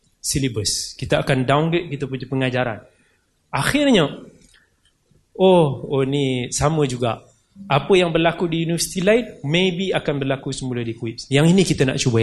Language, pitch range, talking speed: Malay, 135-170 Hz, 145 wpm